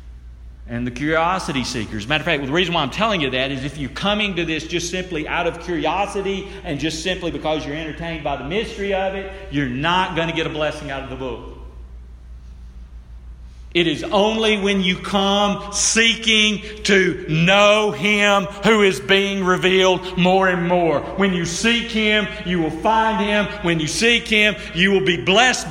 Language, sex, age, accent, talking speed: English, male, 40-59, American, 195 wpm